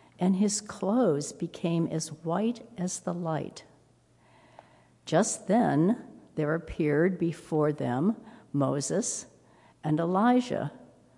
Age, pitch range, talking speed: 60-79, 145-215 Hz, 95 wpm